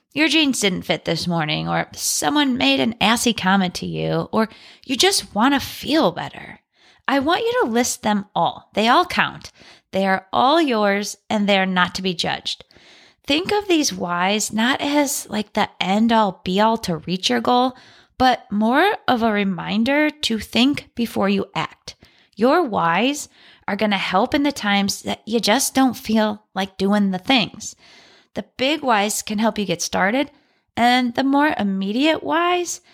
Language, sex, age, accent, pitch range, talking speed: English, female, 20-39, American, 200-270 Hz, 175 wpm